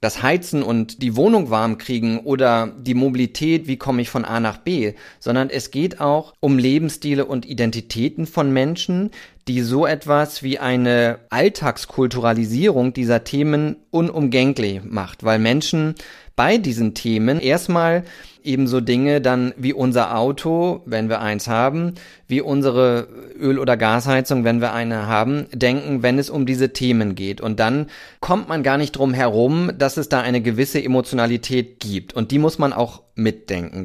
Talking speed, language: 160 wpm, German